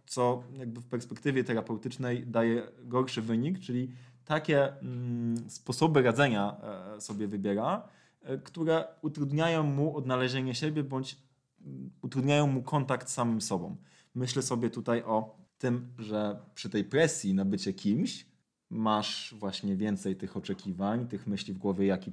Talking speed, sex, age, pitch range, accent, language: 130 wpm, male, 20-39, 100-135 Hz, native, Polish